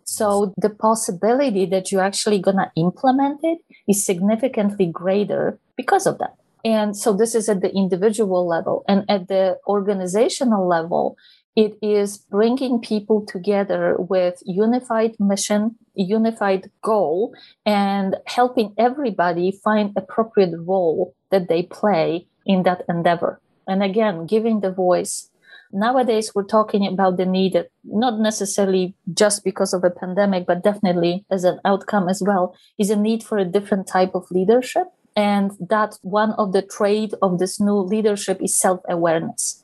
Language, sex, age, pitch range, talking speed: English, female, 30-49, 185-215 Hz, 145 wpm